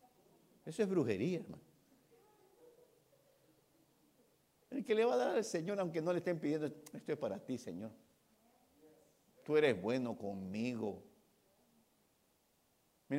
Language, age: Spanish, 60-79